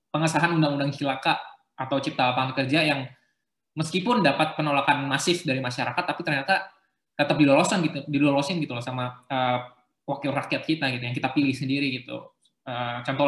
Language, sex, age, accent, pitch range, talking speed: Indonesian, male, 20-39, native, 130-160 Hz, 155 wpm